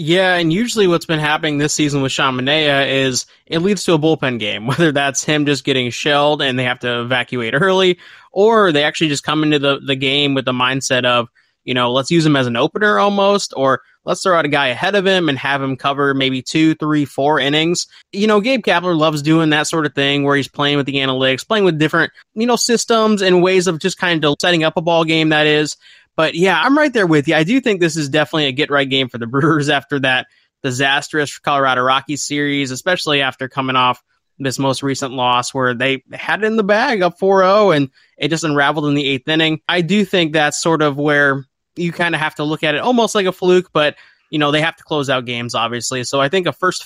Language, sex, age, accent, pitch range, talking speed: English, male, 20-39, American, 135-175 Hz, 245 wpm